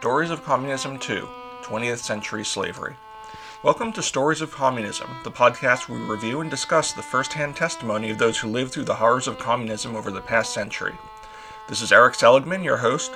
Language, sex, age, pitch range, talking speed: English, male, 40-59, 115-160 Hz, 185 wpm